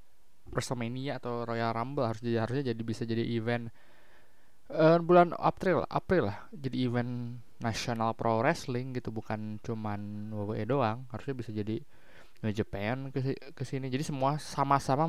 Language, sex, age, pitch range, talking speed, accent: Indonesian, male, 20-39, 110-130 Hz, 145 wpm, native